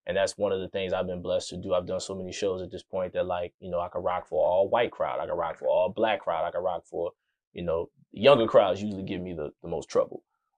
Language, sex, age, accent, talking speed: English, male, 20-39, American, 295 wpm